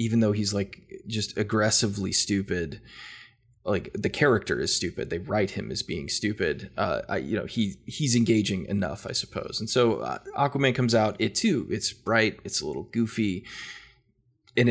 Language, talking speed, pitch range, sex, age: English, 170 wpm, 100-115 Hz, male, 20-39